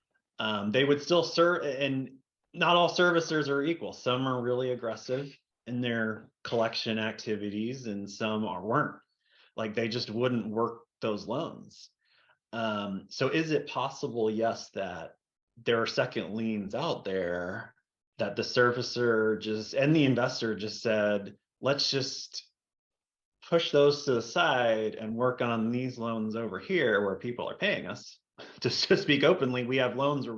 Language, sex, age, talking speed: English, male, 30-49, 155 wpm